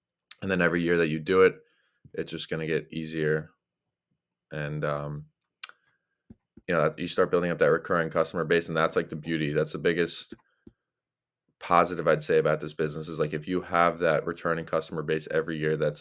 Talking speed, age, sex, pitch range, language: 195 wpm, 20-39, male, 80-85 Hz, English